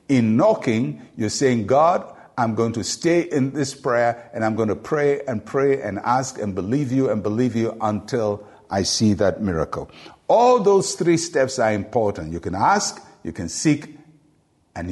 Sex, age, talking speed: male, 60-79, 180 wpm